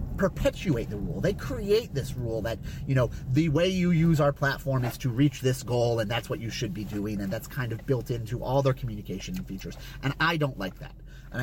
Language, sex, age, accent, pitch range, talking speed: English, male, 30-49, American, 125-160 Hz, 230 wpm